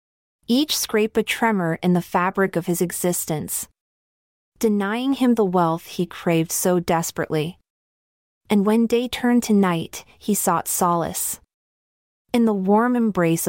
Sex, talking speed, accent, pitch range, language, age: female, 140 wpm, American, 165-210 Hz, English, 30-49